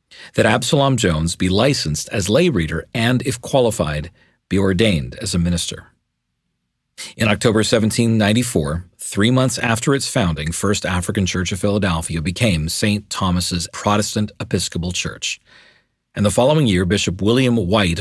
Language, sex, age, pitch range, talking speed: English, male, 40-59, 85-115 Hz, 140 wpm